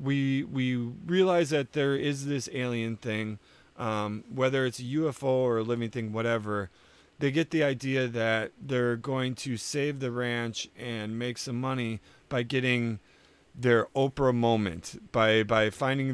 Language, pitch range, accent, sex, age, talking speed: English, 110-130 Hz, American, male, 40-59, 155 wpm